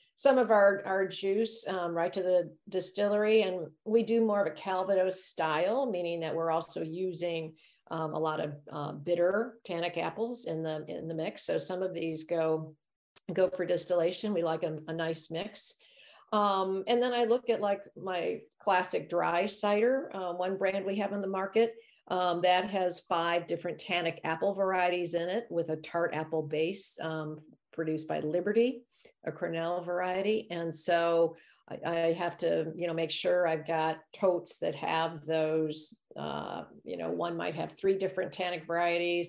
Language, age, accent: English, 50-69, American